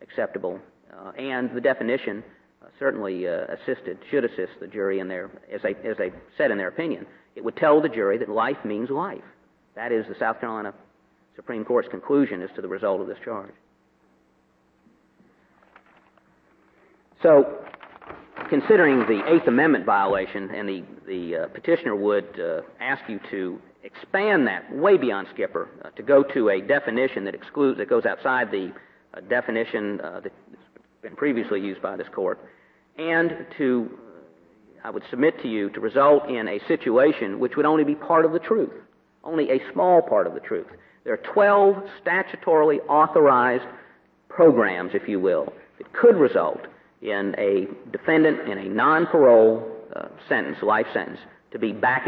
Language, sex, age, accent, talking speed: English, male, 50-69, American, 165 wpm